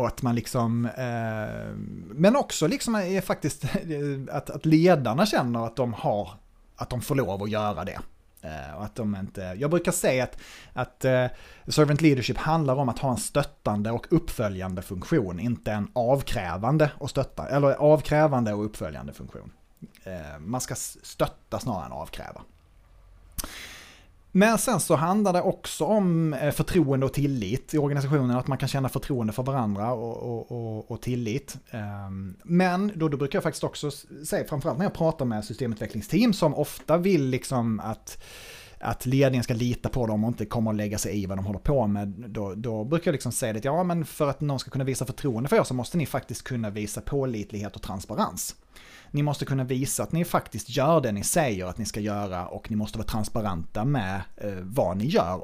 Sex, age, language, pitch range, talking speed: male, 30-49, Swedish, 105-150 Hz, 190 wpm